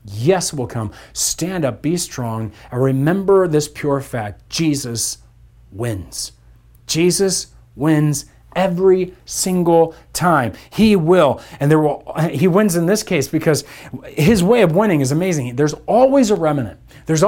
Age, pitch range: 40-59, 125-185 Hz